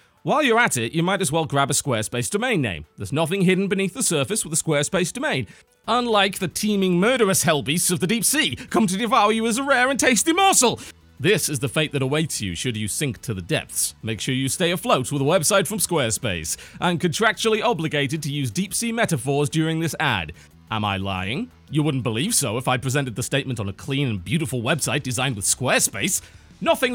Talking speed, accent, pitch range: 220 wpm, British, 140-220 Hz